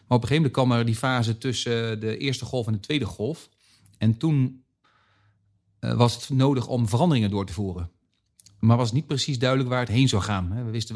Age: 40-59